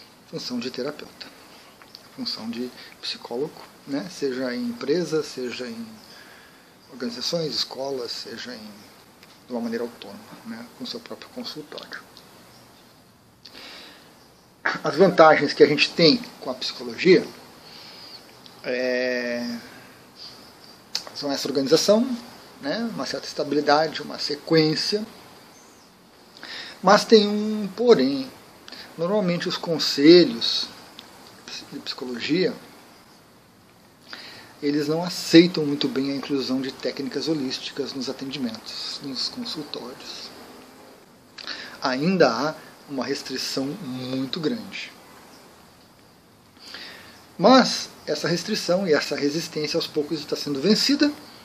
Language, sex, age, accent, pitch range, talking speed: Portuguese, male, 40-59, Brazilian, 135-210 Hz, 95 wpm